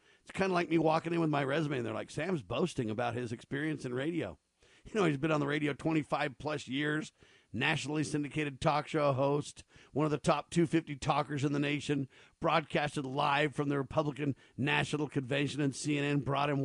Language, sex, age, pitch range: English, male, 50-69, 140-155 Hz